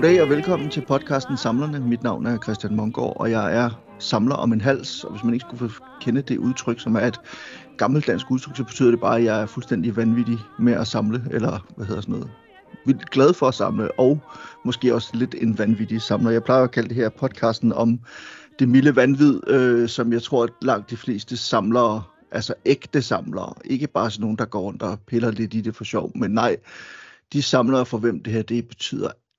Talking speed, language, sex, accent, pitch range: 220 wpm, Danish, male, native, 115-135 Hz